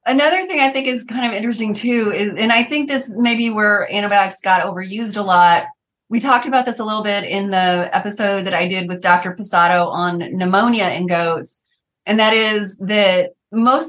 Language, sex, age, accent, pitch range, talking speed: English, female, 30-49, American, 185-225 Hz, 205 wpm